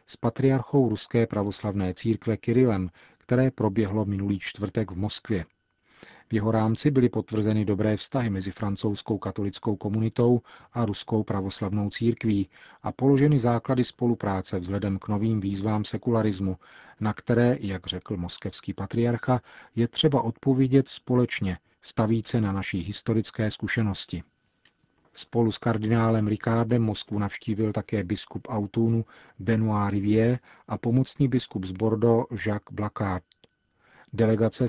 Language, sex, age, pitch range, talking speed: Czech, male, 40-59, 100-115 Hz, 120 wpm